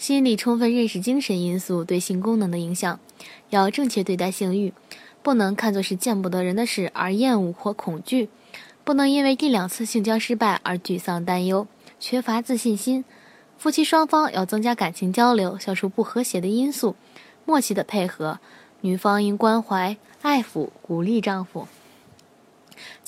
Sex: female